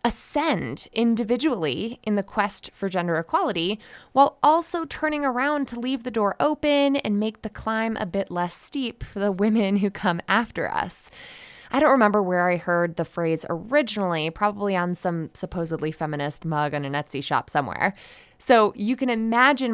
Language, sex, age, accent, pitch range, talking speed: English, female, 20-39, American, 175-250 Hz, 170 wpm